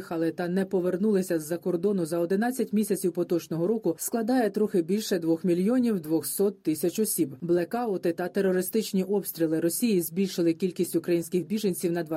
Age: 30-49